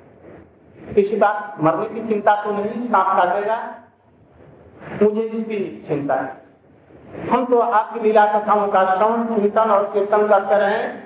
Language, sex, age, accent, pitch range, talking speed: Hindi, male, 60-79, native, 195-230 Hz, 135 wpm